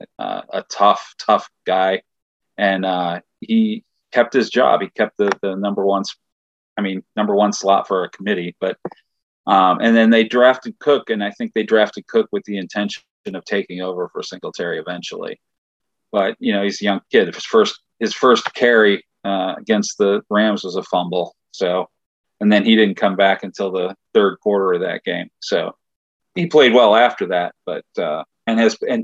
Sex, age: male, 40-59